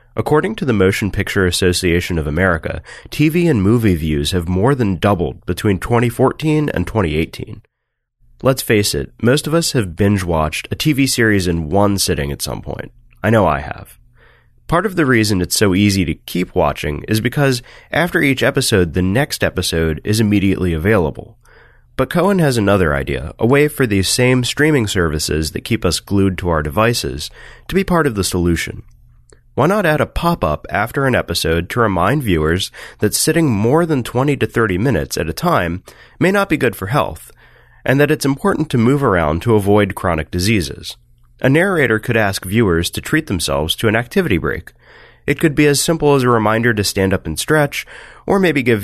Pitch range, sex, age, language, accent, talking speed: 90-130 Hz, male, 30-49, English, American, 190 wpm